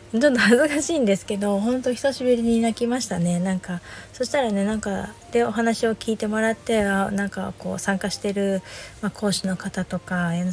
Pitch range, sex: 180-225 Hz, female